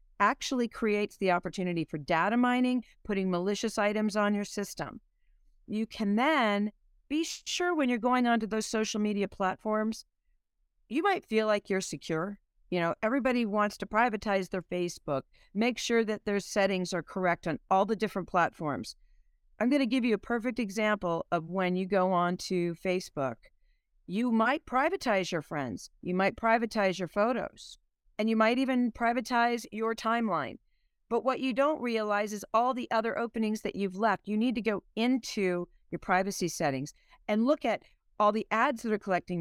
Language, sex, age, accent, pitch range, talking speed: English, female, 50-69, American, 185-235 Hz, 175 wpm